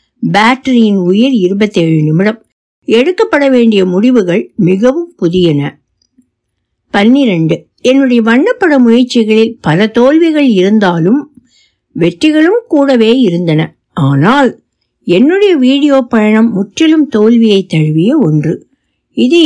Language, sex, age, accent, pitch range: Tamil, female, 60-79, native, 185-275 Hz